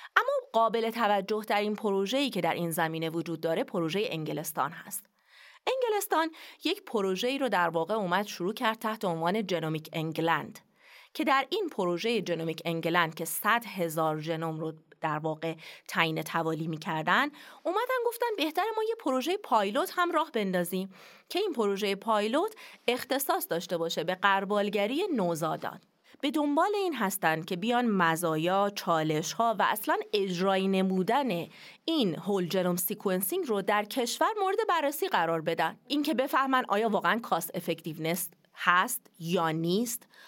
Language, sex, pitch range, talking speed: Persian, female, 170-260 Hz, 140 wpm